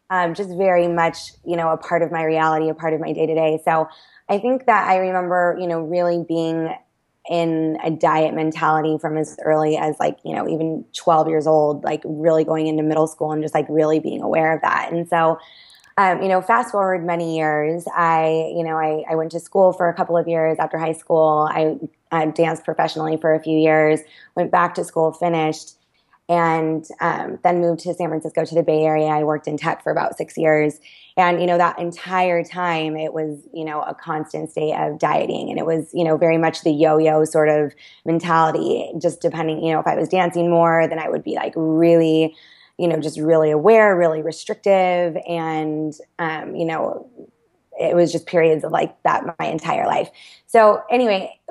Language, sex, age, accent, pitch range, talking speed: English, female, 20-39, American, 155-175 Hz, 210 wpm